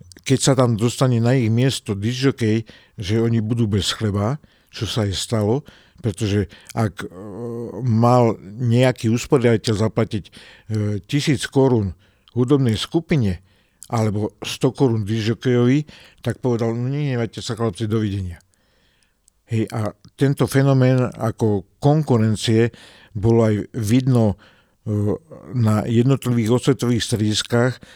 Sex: male